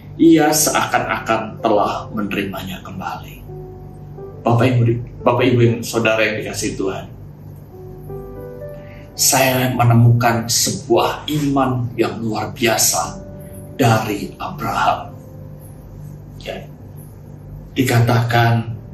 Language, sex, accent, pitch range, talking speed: Indonesian, male, native, 120-150 Hz, 75 wpm